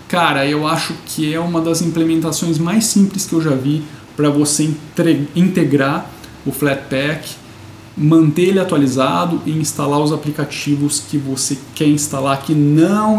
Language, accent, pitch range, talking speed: Portuguese, Brazilian, 140-165 Hz, 145 wpm